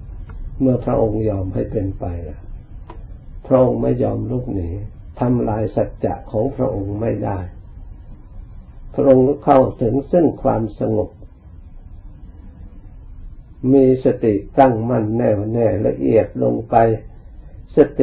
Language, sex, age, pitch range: Thai, male, 60-79, 90-125 Hz